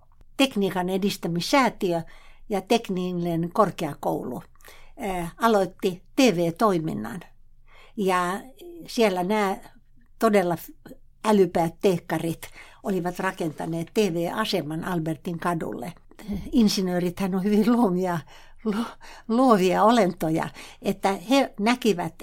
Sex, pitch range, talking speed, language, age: female, 175-220 Hz, 80 wpm, Finnish, 60-79